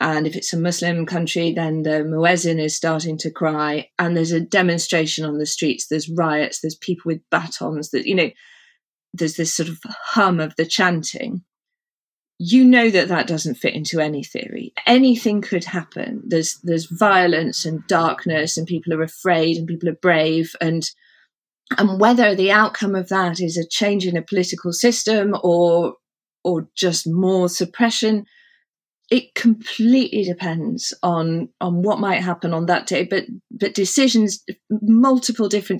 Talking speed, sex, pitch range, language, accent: 165 wpm, female, 165-210 Hz, English, British